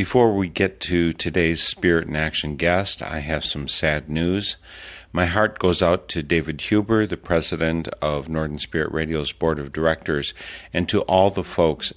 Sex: male